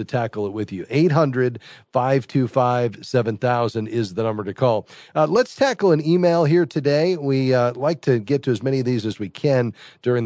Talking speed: 185 wpm